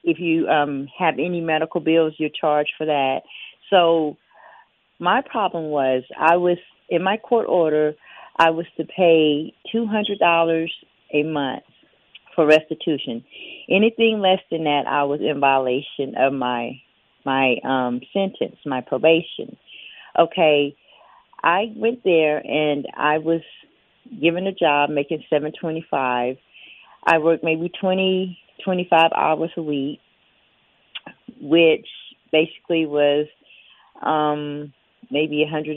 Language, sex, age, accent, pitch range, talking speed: English, female, 40-59, American, 150-180 Hz, 115 wpm